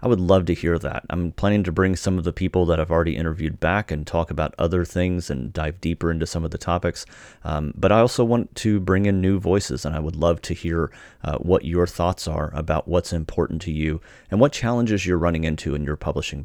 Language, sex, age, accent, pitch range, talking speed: English, male, 30-49, American, 80-95 Hz, 245 wpm